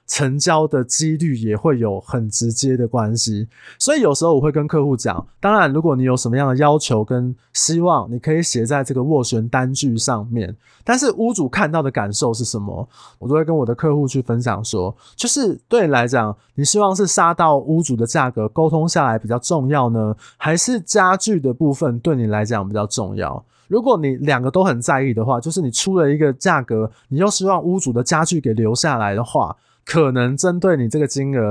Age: 20-39